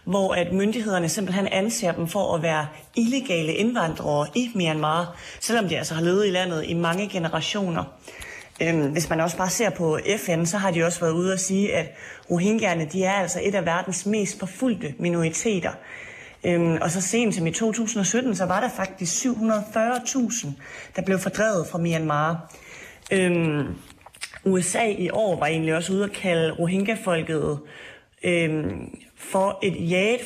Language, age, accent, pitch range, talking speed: Danish, 30-49, native, 170-210 Hz, 160 wpm